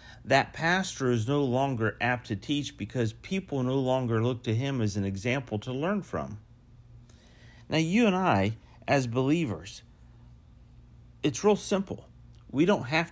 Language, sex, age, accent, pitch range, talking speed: English, male, 50-69, American, 110-150 Hz, 150 wpm